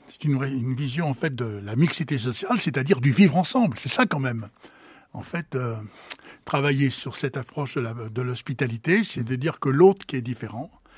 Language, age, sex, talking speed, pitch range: French, 60-79, male, 190 wpm, 130-180 Hz